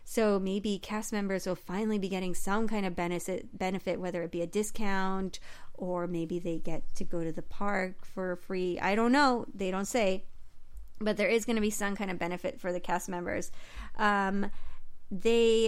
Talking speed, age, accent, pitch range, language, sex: 190 wpm, 30-49, American, 190-245 Hz, English, female